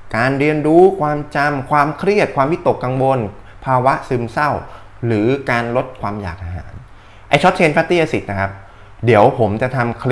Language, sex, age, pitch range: Thai, male, 20-39, 100-145 Hz